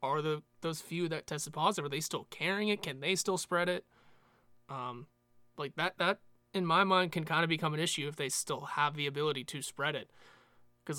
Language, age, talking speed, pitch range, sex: English, 20-39, 220 wpm, 130-165 Hz, male